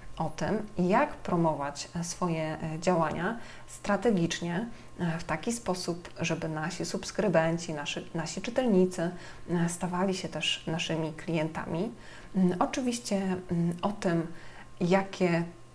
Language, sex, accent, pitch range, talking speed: Polish, female, native, 170-195 Hz, 95 wpm